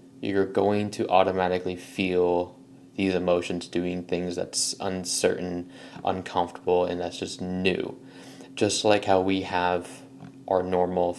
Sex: male